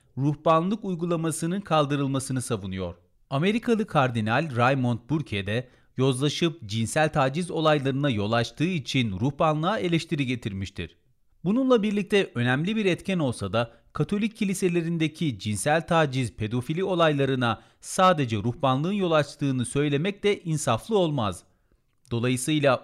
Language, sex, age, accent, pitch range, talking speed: Turkish, male, 40-59, native, 115-165 Hz, 110 wpm